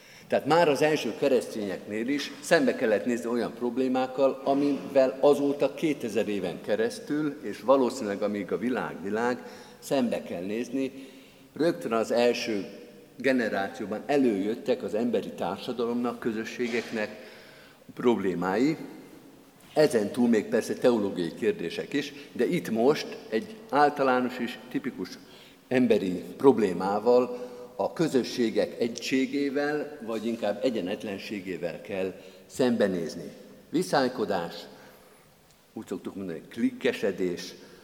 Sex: male